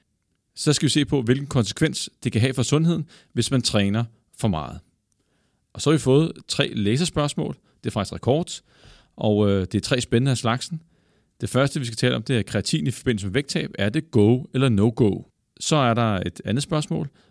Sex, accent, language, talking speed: male, native, Danish, 205 wpm